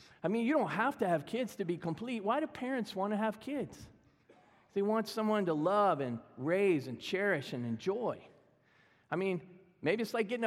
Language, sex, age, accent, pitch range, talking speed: English, male, 40-59, American, 155-220 Hz, 200 wpm